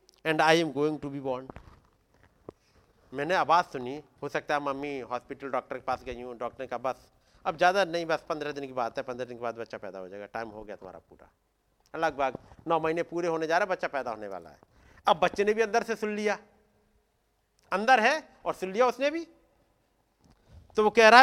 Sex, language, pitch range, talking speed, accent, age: male, Hindi, 130-210 Hz, 220 wpm, native, 50-69